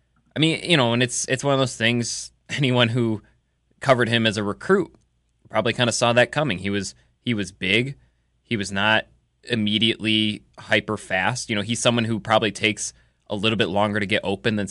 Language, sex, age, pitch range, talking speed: English, male, 20-39, 95-115 Hz, 200 wpm